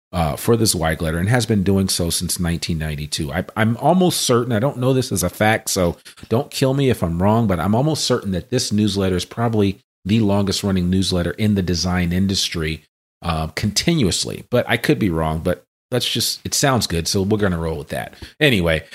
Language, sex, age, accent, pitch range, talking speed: English, male, 40-59, American, 90-110 Hz, 210 wpm